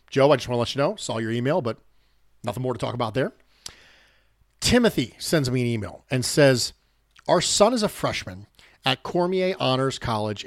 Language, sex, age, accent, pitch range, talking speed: English, male, 40-59, American, 115-150 Hz, 195 wpm